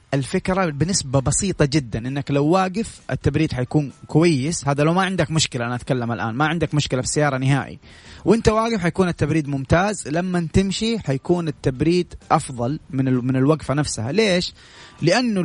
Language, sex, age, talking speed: Arabic, male, 30-49, 155 wpm